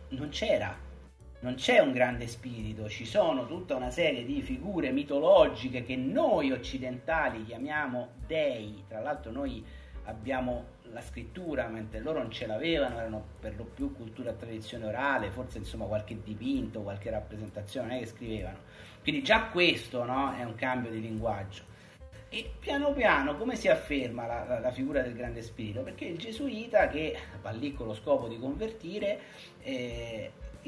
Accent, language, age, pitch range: native, Italian, 40-59, 105-145 Hz